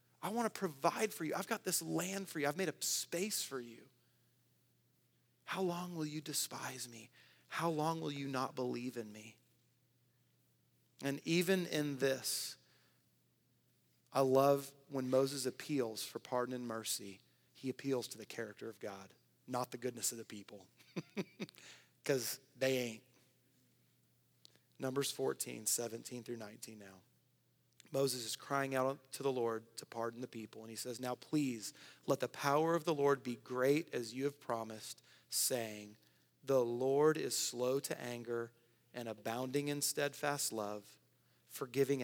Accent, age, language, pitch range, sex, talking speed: American, 30-49, English, 115-140 Hz, male, 155 wpm